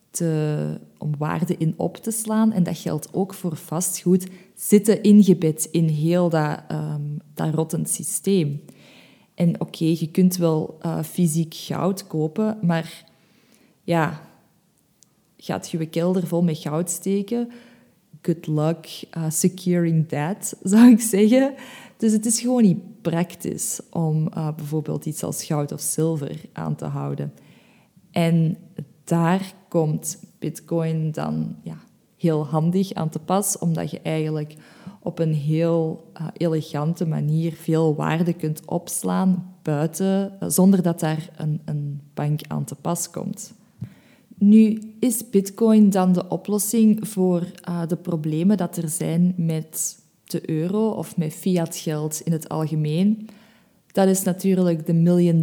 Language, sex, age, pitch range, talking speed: Dutch, female, 20-39, 160-195 Hz, 135 wpm